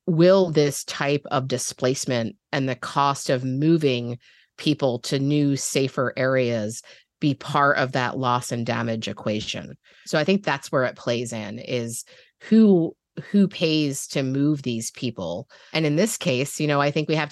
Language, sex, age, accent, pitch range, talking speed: English, female, 30-49, American, 125-150 Hz, 170 wpm